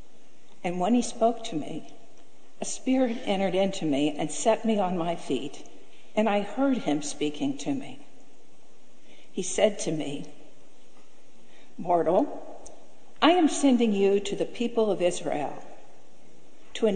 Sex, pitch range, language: female, 180-225 Hz, English